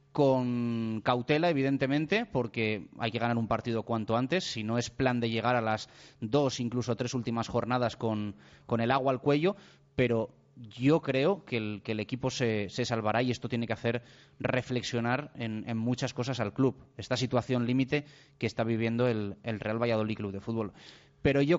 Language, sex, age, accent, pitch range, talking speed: Spanish, male, 30-49, Spanish, 115-145 Hz, 190 wpm